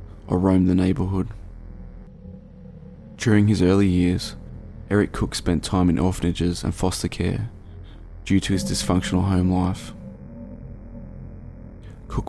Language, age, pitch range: English, 20-39, 90-100 Hz